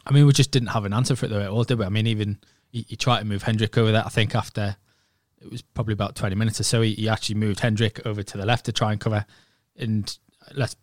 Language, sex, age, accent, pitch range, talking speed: English, male, 20-39, British, 105-125 Hz, 290 wpm